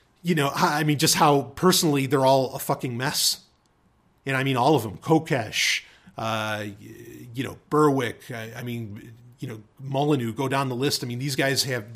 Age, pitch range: 30-49, 125-170 Hz